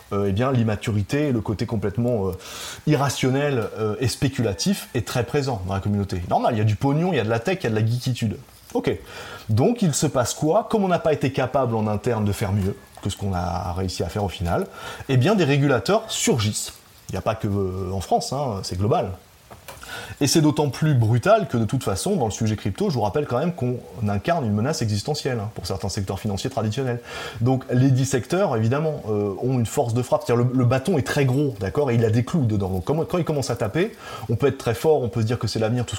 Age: 30-49